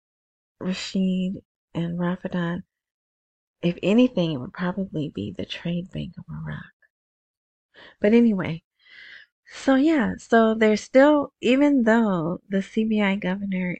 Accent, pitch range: American, 175-210 Hz